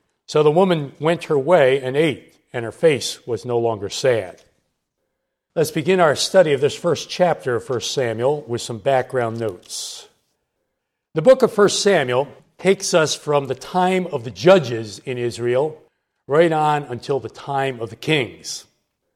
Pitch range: 130-175 Hz